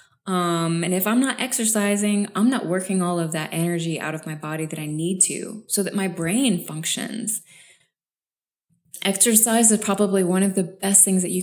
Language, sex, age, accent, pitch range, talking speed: English, female, 20-39, American, 160-195 Hz, 190 wpm